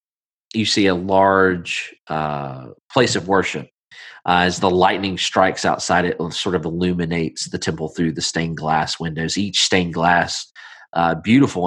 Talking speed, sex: 155 wpm, male